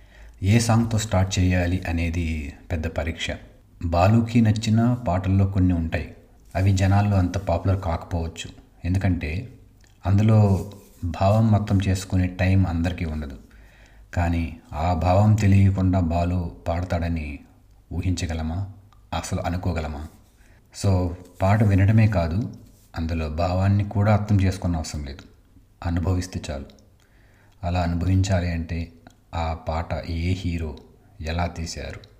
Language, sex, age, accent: Telugu, male, 30-49, native